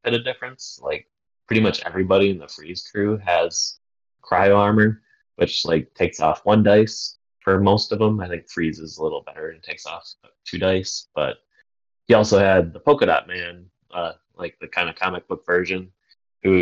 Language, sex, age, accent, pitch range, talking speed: English, male, 20-39, American, 90-115 Hz, 190 wpm